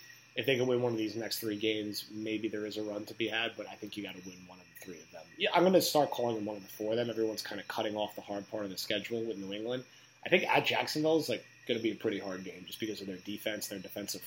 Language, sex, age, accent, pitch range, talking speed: English, male, 30-49, American, 100-125 Hz, 330 wpm